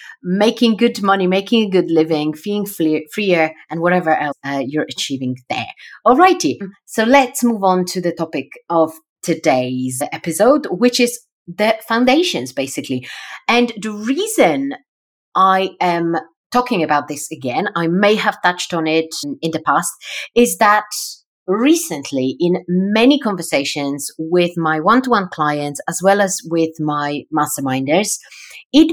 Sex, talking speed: female, 140 wpm